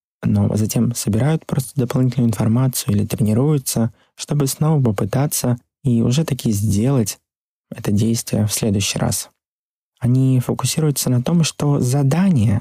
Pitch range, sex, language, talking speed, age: 110-140 Hz, male, Russian, 120 wpm, 20-39